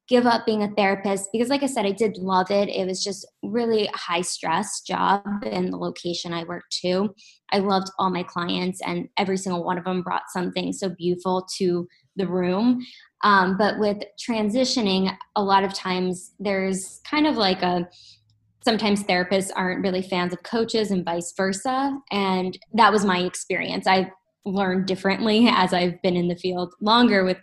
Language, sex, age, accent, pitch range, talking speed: English, female, 10-29, American, 180-210 Hz, 180 wpm